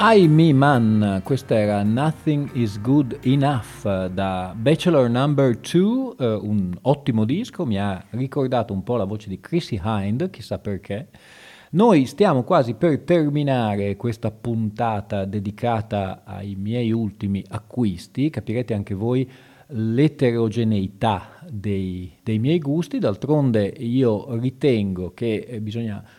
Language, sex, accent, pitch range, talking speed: Italian, male, native, 100-130 Hz, 125 wpm